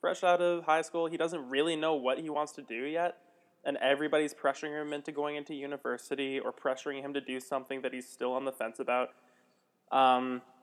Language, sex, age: English, male, 20-39